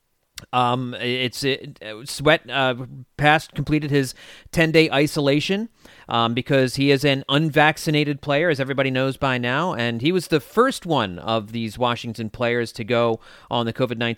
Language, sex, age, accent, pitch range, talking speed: English, male, 30-49, American, 115-150 Hz, 155 wpm